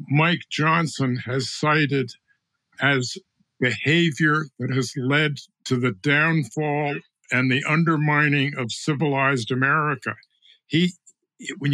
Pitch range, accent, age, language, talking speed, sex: 135-160 Hz, American, 60-79, English, 100 wpm, male